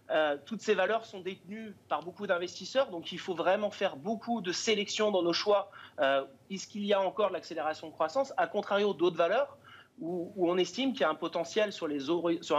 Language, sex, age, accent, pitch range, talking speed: French, male, 30-49, French, 165-205 Hz, 225 wpm